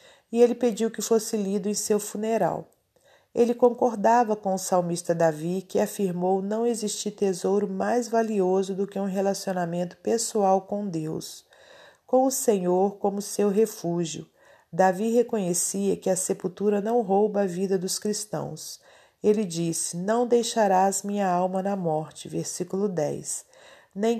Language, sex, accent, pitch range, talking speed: Portuguese, female, Brazilian, 180-210 Hz, 140 wpm